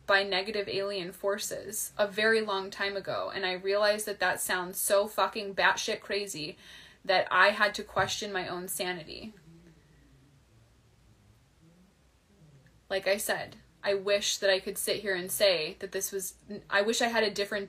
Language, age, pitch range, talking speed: English, 20-39, 185-220 Hz, 165 wpm